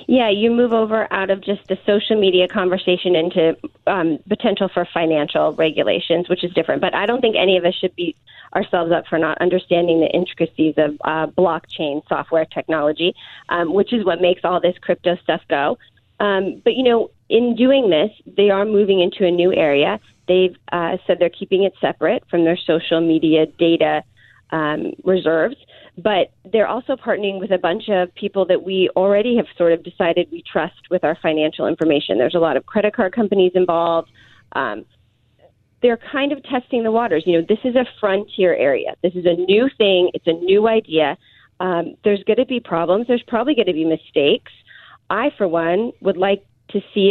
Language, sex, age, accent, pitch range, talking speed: English, female, 30-49, American, 170-210 Hz, 190 wpm